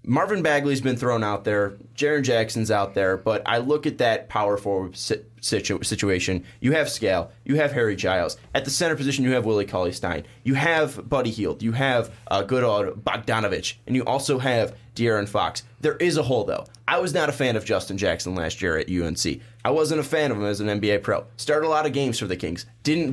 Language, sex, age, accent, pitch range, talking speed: English, male, 20-39, American, 105-135 Hz, 225 wpm